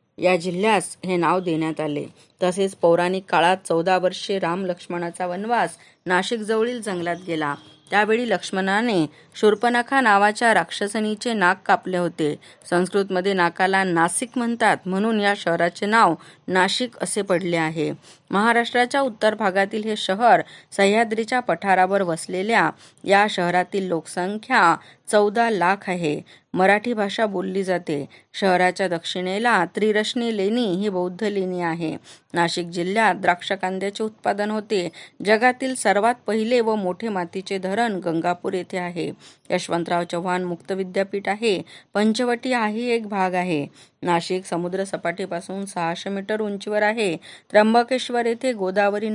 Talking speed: 95 wpm